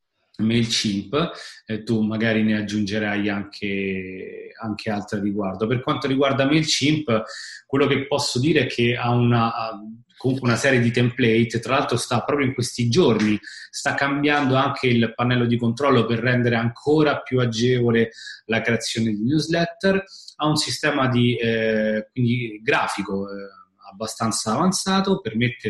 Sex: male